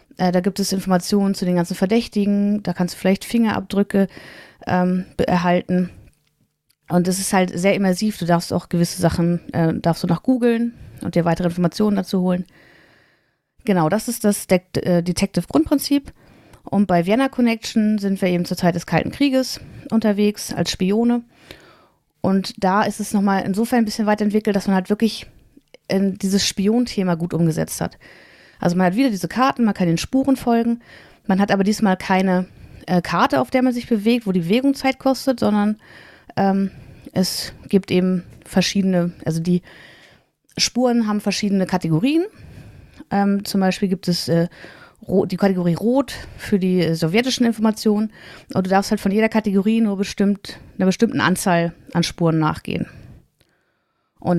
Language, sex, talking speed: German, female, 165 wpm